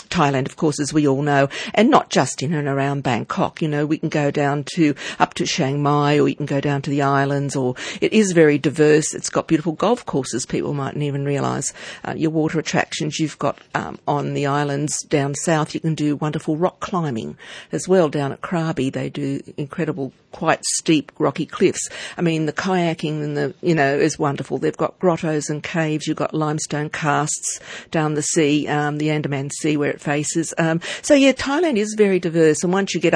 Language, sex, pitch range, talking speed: English, female, 145-170 Hz, 210 wpm